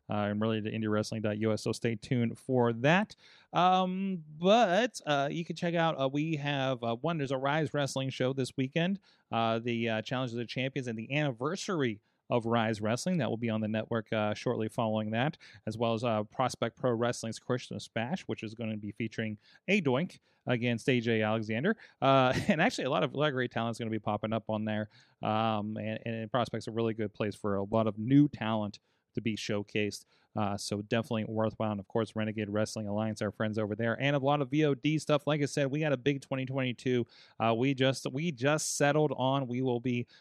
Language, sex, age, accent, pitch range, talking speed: English, male, 30-49, American, 110-145 Hz, 220 wpm